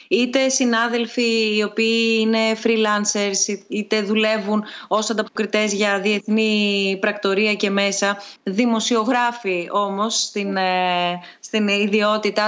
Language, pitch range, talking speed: Greek, 200-255 Hz, 95 wpm